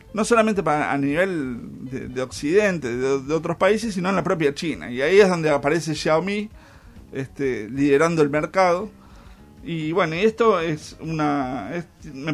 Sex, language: male, Spanish